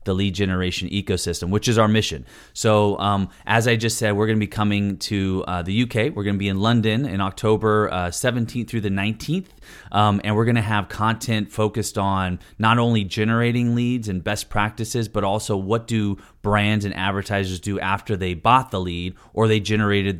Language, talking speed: English, 200 wpm